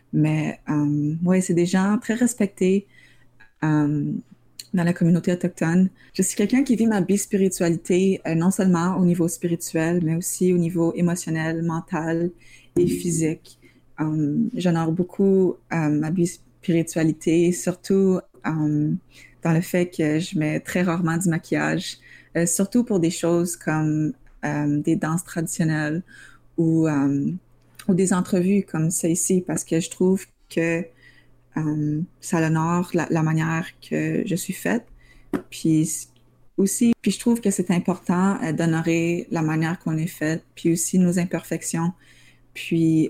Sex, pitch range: female, 155-180 Hz